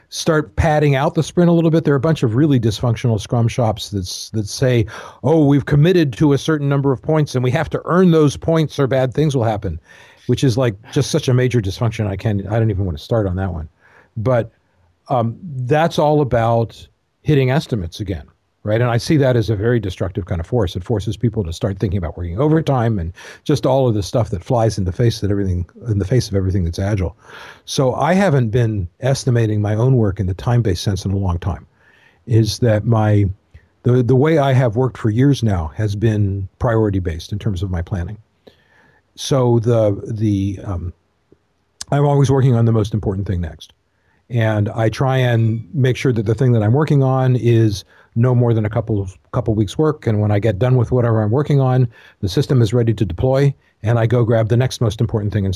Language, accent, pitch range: English, American, 100-130 Hz